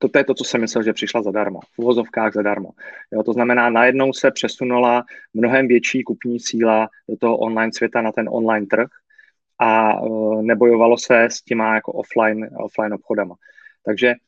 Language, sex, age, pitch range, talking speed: Czech, male, 30-49, 110-125 Hz, 170 wpm